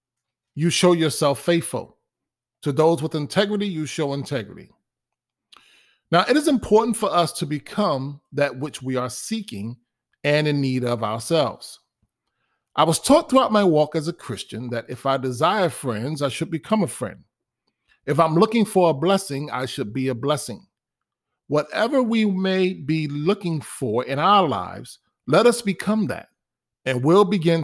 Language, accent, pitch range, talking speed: English, American, 130-190 Hz, 165 wpm